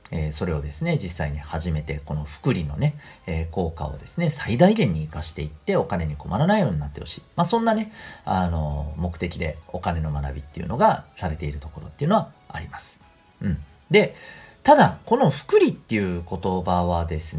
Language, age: Japanese, 40-59